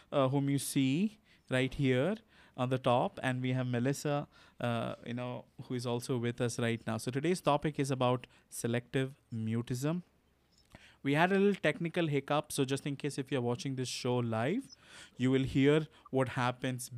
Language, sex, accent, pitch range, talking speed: English, male, Indian, 125-150 Hz, 185 wpm